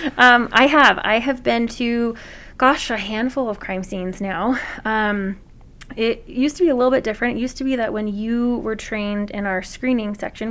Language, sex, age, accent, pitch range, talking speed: English, female, 20-39, American, 195-235 Hz, 205 wpm